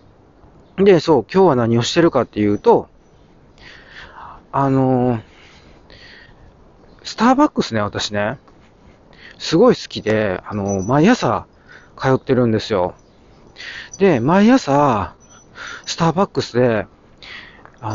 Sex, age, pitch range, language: male, 40-59, 105-170 Hz, Japanese